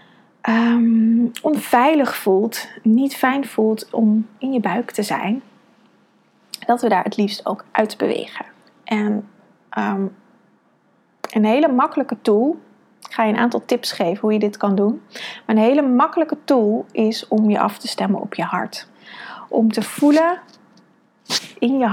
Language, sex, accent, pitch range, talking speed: Dutch, female, Dutch, 205-240 Hz, 150 wpm